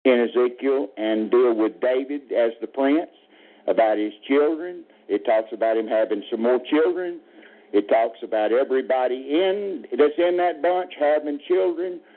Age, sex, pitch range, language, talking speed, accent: 60-79, male, 125-190 Hz, English, 155 wpm, American